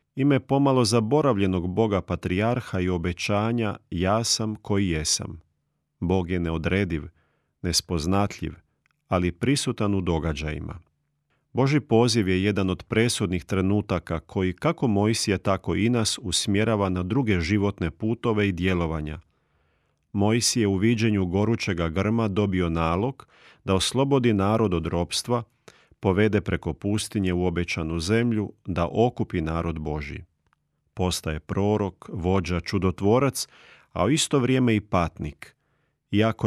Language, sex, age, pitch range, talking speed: Croatian, male, 40-59, 90-110 Hz, 120 wpm